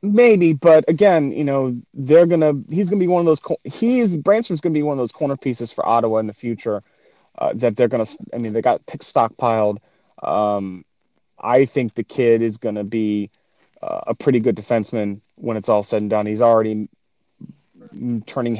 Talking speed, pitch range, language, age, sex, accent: 215 wpm, 110-140 Hz, English, 30-49, male, American